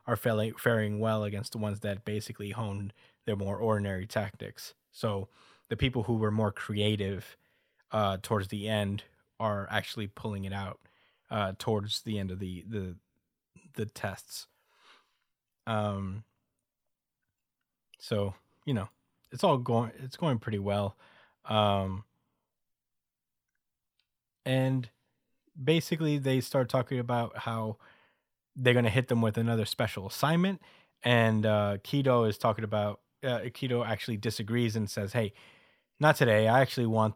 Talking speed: 135 wpm